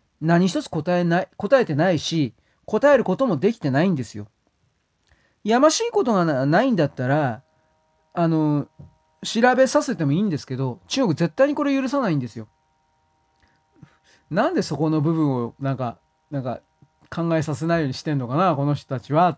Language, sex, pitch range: Japanese, male, 140-185 Hz